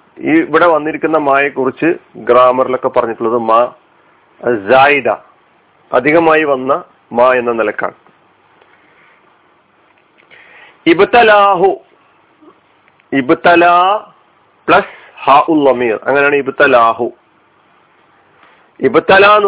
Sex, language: male, Malayalam